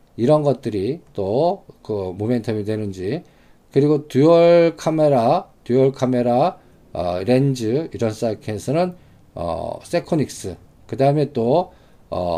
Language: Korean